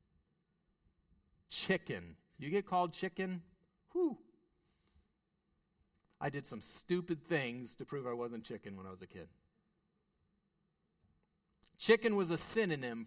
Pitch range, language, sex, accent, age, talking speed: 135-190 Hz, English, male, American, 40-59, 110 wpm